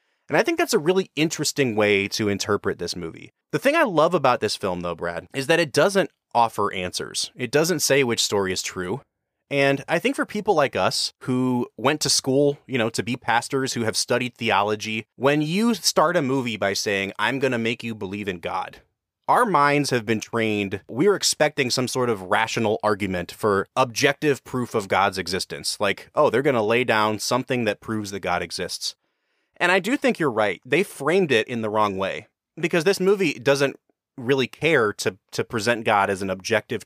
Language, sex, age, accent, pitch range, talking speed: English, male, 30-49, American, 105-145 Hz, 205 wpm